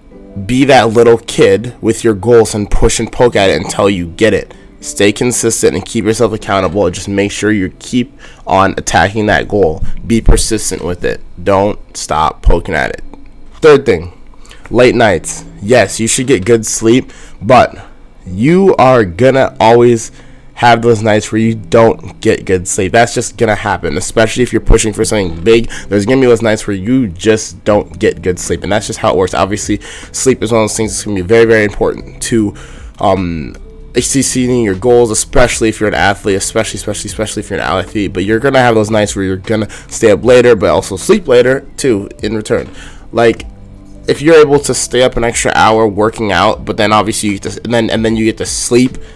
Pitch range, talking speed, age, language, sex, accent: 100-120 Hz, 210 wpm, 20-39, English, male, American